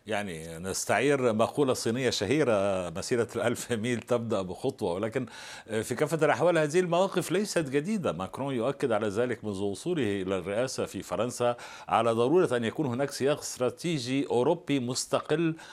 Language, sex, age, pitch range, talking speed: Arabic, male, 60-79, 105-140 Hz, 140 wpm